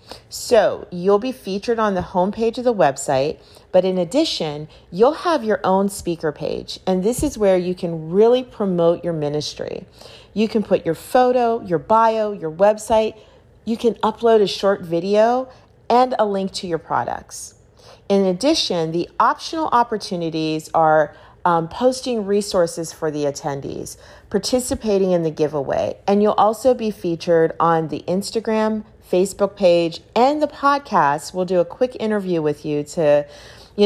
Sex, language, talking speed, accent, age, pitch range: female, English, 155 wpm, American, 40-59, 160-215 Hz